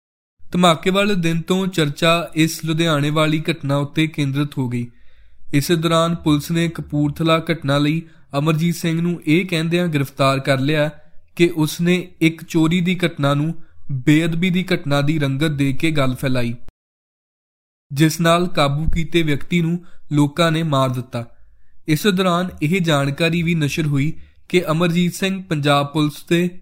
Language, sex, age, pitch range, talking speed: Punjabi, male, 20-39, 145-170 Hz, 135 wpm